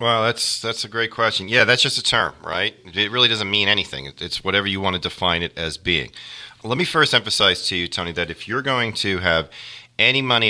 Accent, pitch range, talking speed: American, 85-120 Hz, 235 wpm